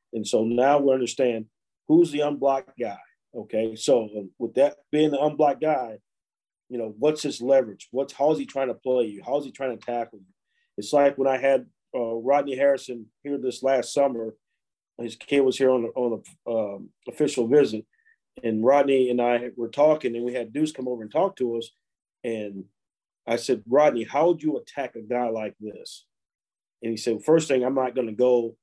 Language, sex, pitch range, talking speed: English, male, 120-145 Hz, 205 wpm